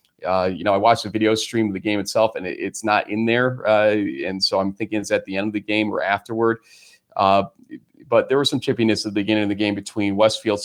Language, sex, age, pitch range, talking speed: English, male, 40-59, 100-115 Hz, 260 wpm